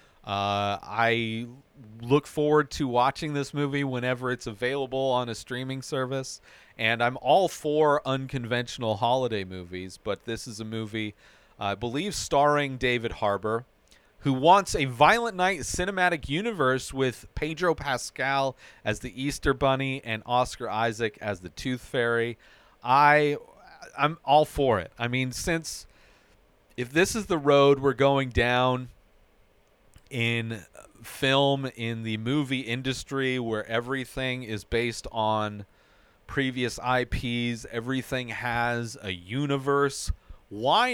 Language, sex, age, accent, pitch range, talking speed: English, male, 40-59, American, 110-140 Hz, 130 wpm